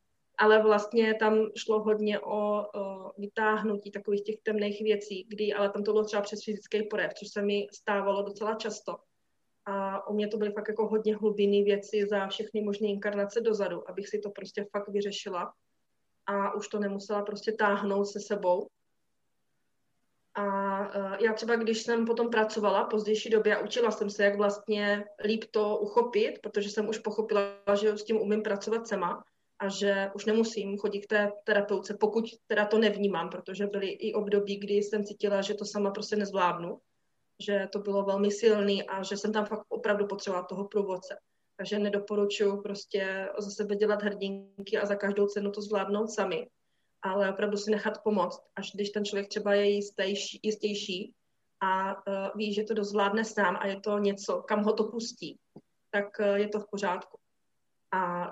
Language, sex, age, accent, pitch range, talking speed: Czech, female, 20-39, native, 200-215 Hz, 175 wpm